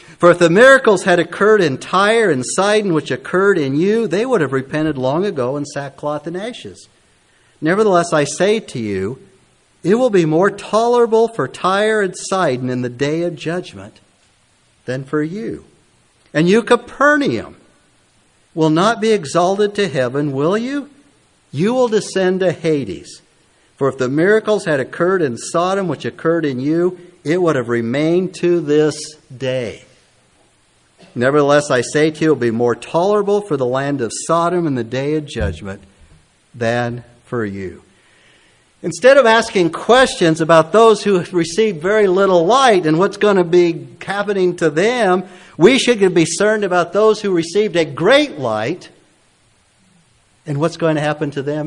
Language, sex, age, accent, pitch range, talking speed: English, male, 50-69, American, 125-195 Hz, 165 wpm